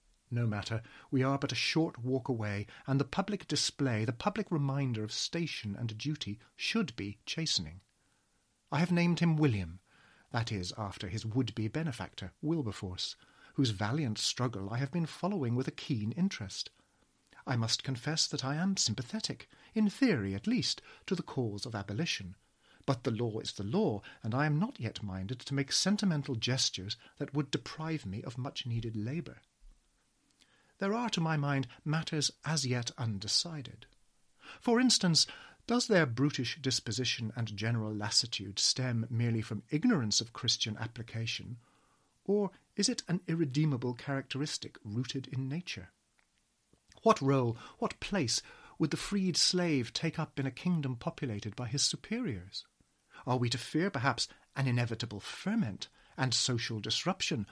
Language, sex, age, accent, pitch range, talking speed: English, male, 40-59, British, 110-155 Hz, 155 wpm